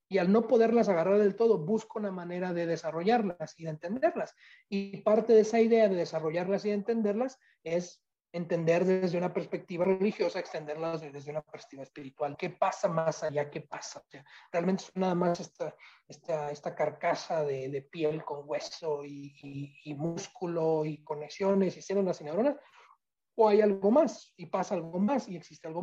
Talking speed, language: 180 wpm, Spanish